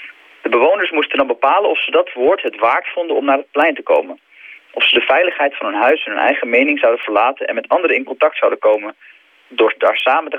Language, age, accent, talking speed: Dutch, 40-59, Dutch, 245 wpm